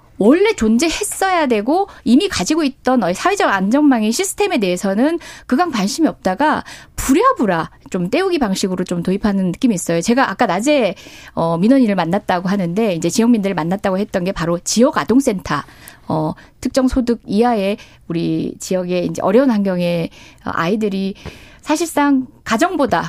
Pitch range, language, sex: 195-295 Hz, Korean, female